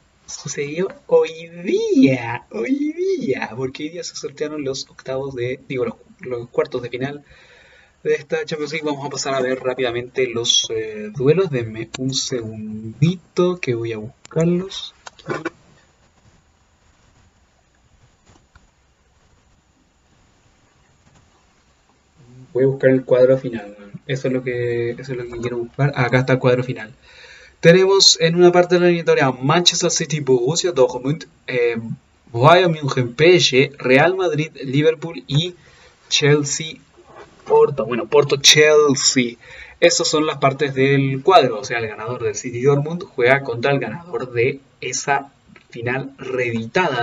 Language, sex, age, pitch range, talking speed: Spanish, male, 30-49, 120-160 Hz, 135 wpm